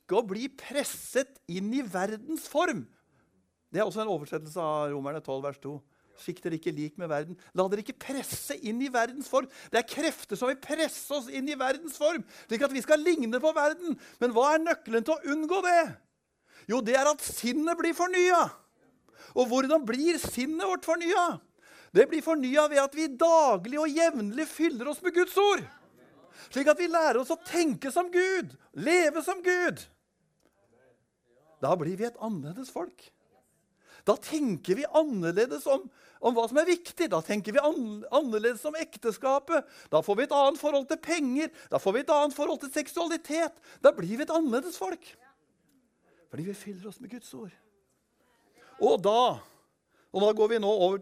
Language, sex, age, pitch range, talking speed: English, male, 60-79, 215-315 Hz, 185 wpm